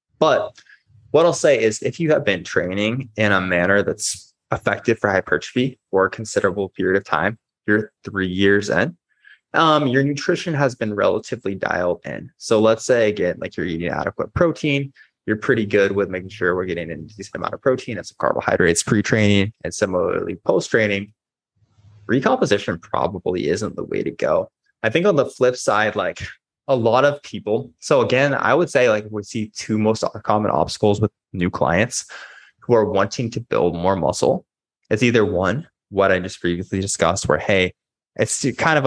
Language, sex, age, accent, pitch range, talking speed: English, male, 20-39, American, 95-115 Hz, 180 wpm